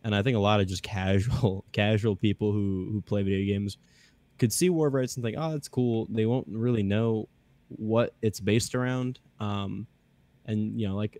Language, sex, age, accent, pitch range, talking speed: English, male, 10-29, American, 100-120 Hz, 205 wpm